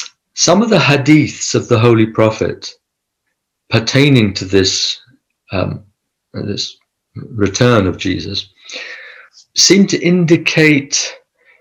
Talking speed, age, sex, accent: 100 wpm, 50-69, male, British